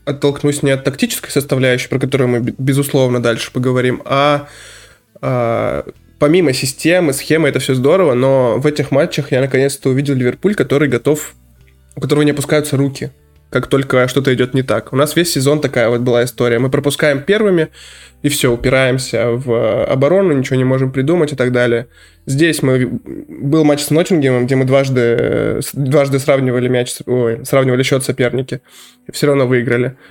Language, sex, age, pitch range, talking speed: Russian, male, 20-39, 125-145 Hz, 165 wpm